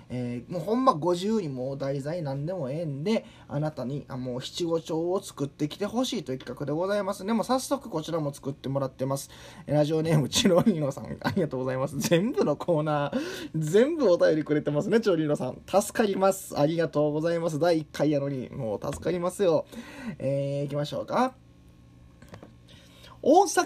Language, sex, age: Japanese, male, 20-39